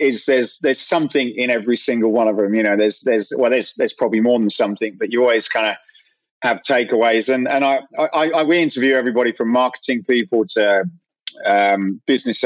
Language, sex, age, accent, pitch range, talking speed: English, male, 40-59, British, 115-135 Hz, 200 wpm